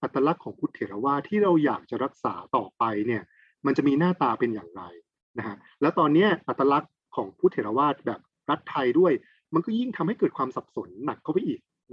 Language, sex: Thai, male